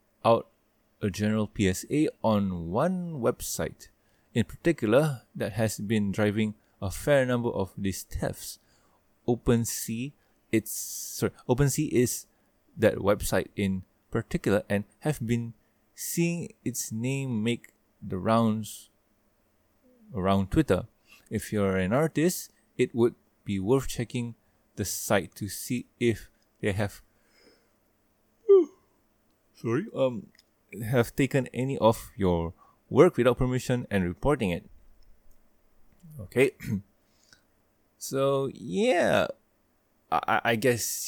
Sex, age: male, 20-39